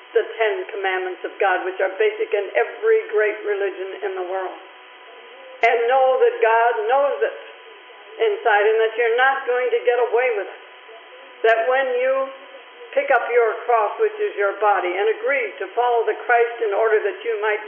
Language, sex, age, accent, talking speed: English, female, 60-79, American, 185 wpm